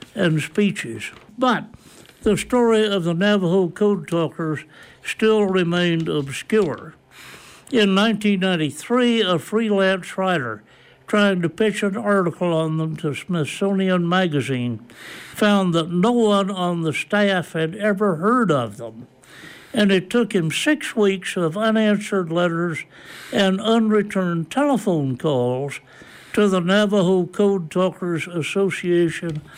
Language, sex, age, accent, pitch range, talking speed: English, male, 60-79, American, 160-210 Hz, 120 wpm